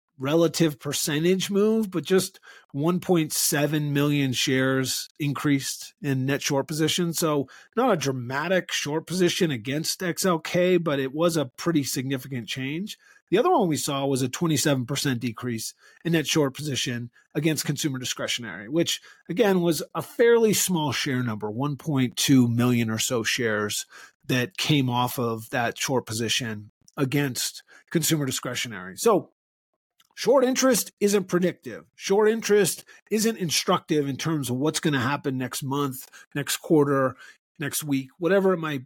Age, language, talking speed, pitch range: 40-59, English, 140 wpm, 135-180 Hz